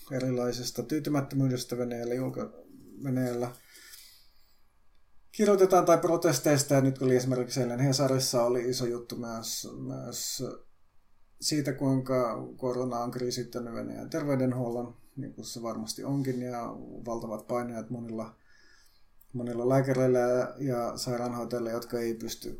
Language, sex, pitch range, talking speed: Finnish, male, 115-130 Hz, 115 wpm